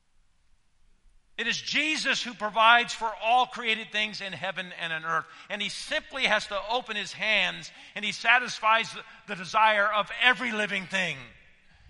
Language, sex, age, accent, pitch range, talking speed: English, male, 50-69, American, 160-240 Hz, 155 wpm